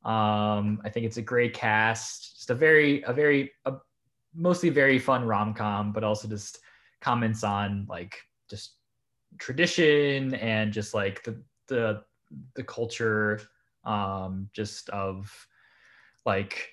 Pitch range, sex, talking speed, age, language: 105-125 Hz, male, 135 wpm, 20-39, English